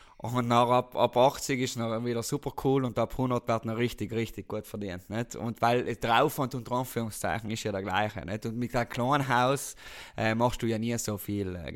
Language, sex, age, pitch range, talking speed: German, male, 20-39, 105-125 Hz, 220 wpm